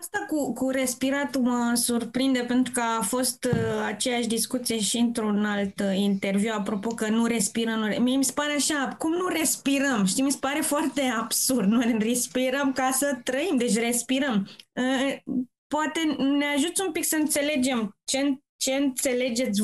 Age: 20-39